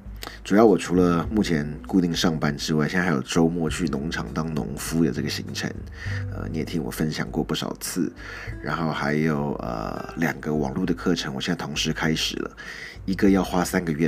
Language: Chinese